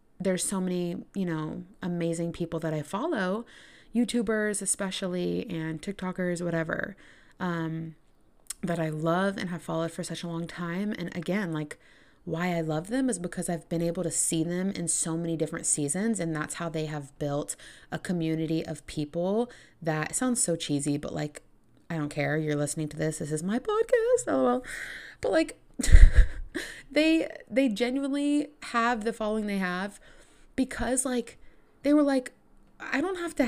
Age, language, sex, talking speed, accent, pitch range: 20-39, English, female, 170 wpm, American, 165-235 Hz